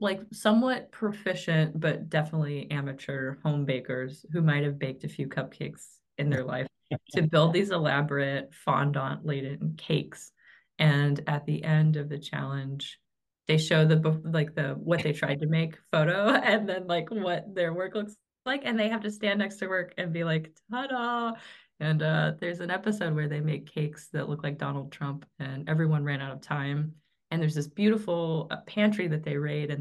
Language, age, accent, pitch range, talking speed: English, 20-39, American, 145-190 Hz, 185 wpm